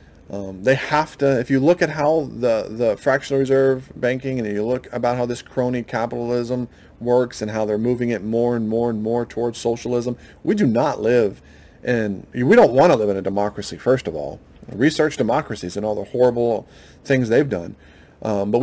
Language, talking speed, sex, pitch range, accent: English, 200 wpm, male, 105-130 Hz, American